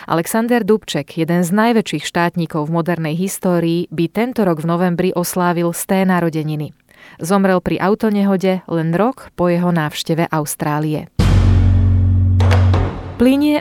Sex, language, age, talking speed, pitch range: female, Slovak, 20-39, 120 wpm, 165-195 Hz